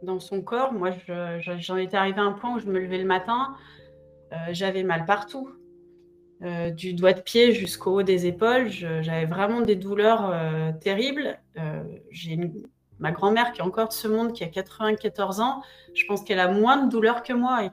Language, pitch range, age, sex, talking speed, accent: French, 170-225 Hz, 30-49, female, 215 wpm, French